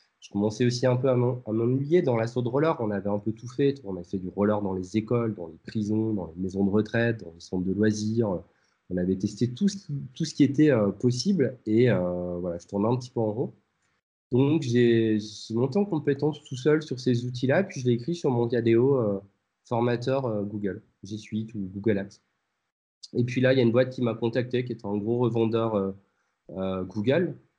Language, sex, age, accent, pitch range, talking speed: French, male, 20-39, French, 95-125 Hz, 230 wpm